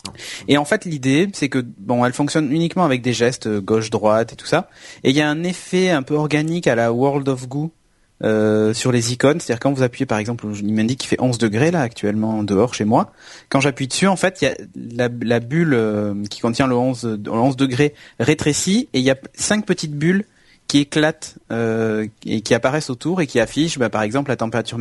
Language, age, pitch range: French, 30-49, 110-145 Hz